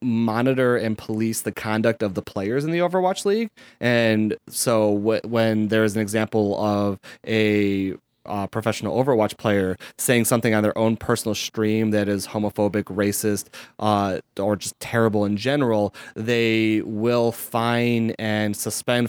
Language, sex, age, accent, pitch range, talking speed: English, male, 30-49, American, 100-115 Hz, 150 wpm